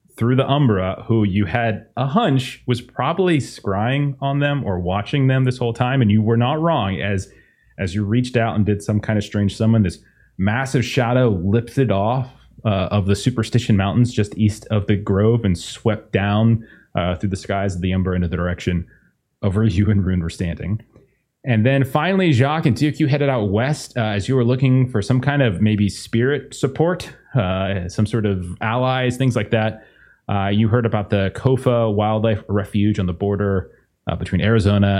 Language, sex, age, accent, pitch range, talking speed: English, male, 30-49, American, 100-125 Hz, 195 wpm